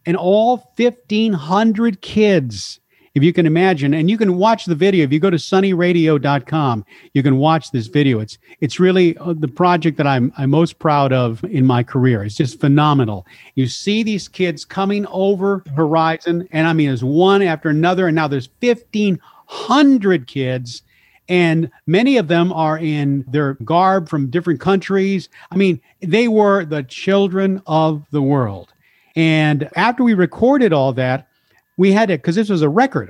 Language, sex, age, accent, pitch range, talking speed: English, male, 50-69, American, 140-190 Hz, 170 wpm